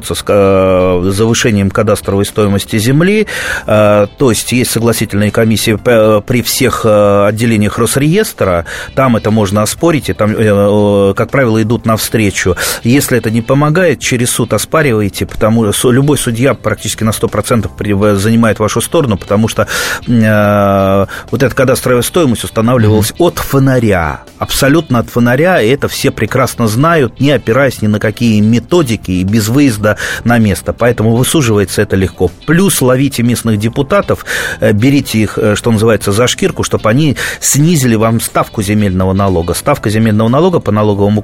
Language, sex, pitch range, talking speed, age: Russian, male, 105-125 Hz, 140 wpm, 30-49